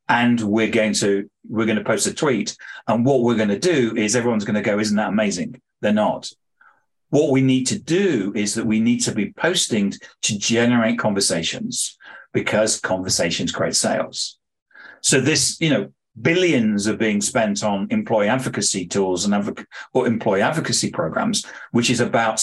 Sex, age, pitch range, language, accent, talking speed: male, 40-59, 105-130 Hz, English, British, 175 wpm